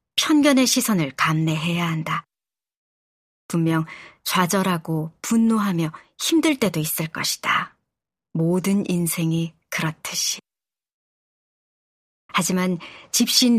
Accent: native